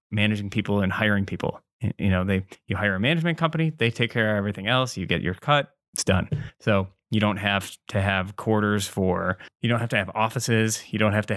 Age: 20-39